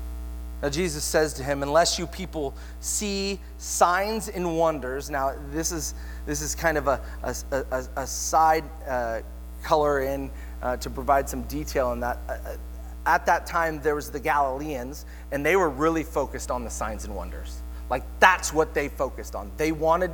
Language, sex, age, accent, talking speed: English, male, 30-49, American, 180 wpm